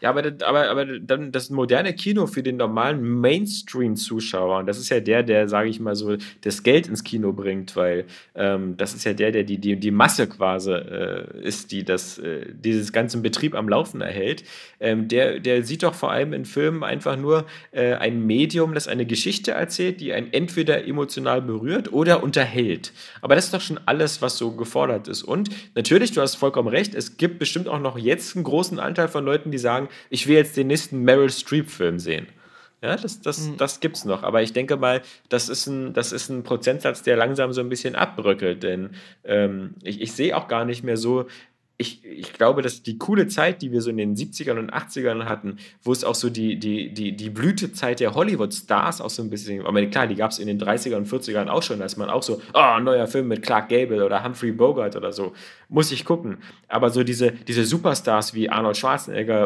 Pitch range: 105-140 Hz